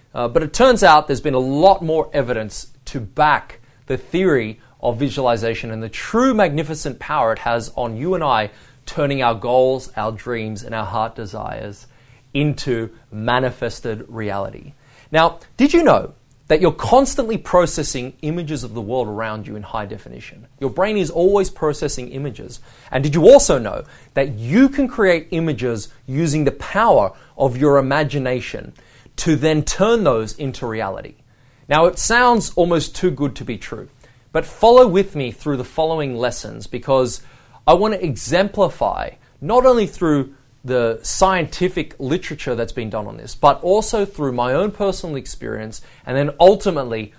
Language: English